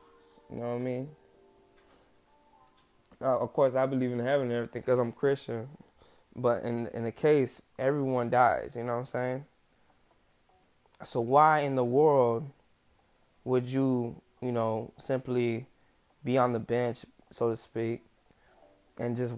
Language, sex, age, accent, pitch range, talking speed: English, male, 20-39, American, 125-170 Hz, 150 wpm